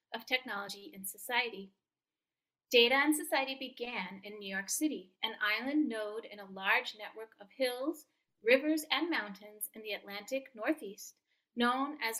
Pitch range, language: 205-270 Hz, English